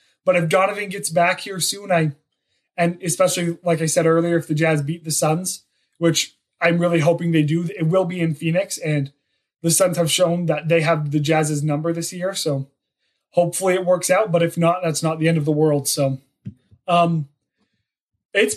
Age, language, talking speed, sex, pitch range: 20-39, English, 195 wpm, male, 155-185 Hz